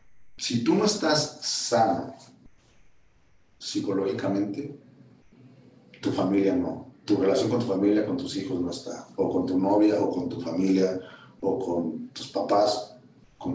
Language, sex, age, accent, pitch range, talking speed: Spanish, male, 50-69, Mexican, 95-130 Hz, 140 wpm